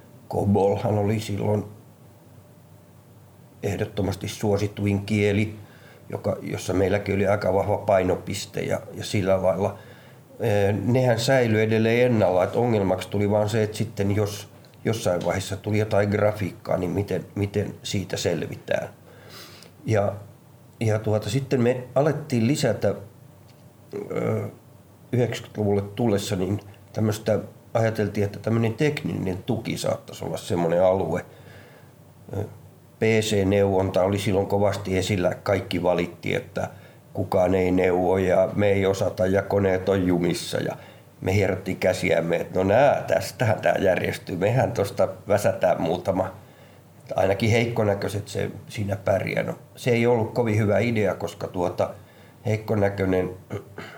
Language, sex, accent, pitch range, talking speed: Finnish, male, native, 100-115 Hz, 120 wpm